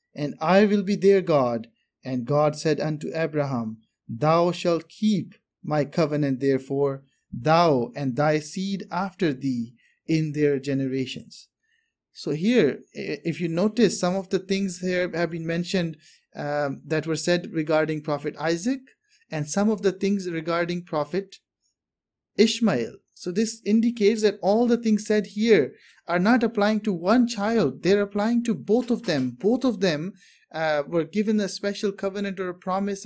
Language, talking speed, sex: English, 160 wpm, male